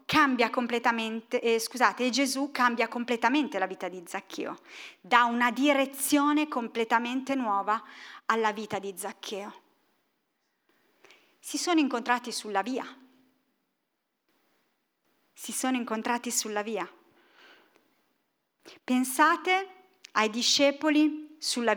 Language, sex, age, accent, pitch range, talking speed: Italian, female, 30-49, native, 215-275 Hz, 95 wpm